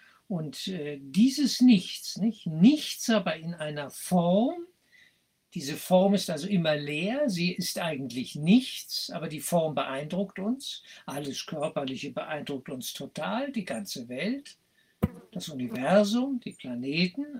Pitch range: 165-225 Hz